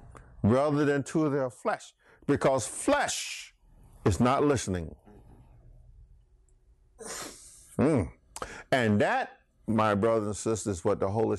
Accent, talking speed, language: American, 110 wpm, English